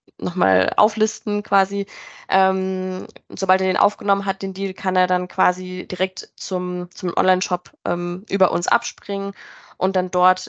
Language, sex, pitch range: German, female, 180-200 Hz